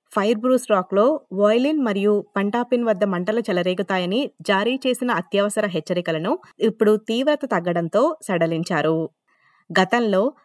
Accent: native